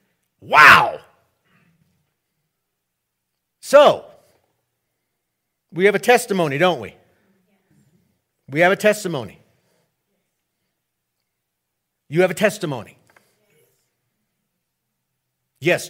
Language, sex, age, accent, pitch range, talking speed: English, male, 50-69, American, 100-140 Hz, 65 wpm